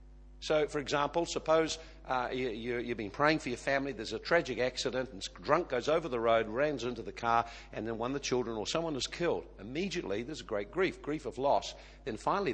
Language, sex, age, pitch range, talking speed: English, male, 50-69, 120-155 Hz, 220 wpm